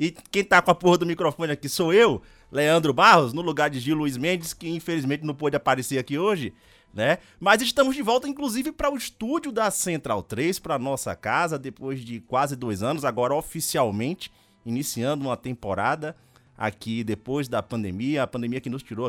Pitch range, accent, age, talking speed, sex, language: 110-155 Hz, Brazilian, 30-49, 190 wpm, male, Portuguese